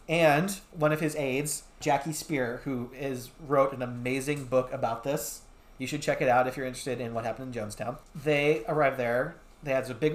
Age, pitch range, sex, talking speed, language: 30-49, 130-165 Hz, male, 205 wpm, English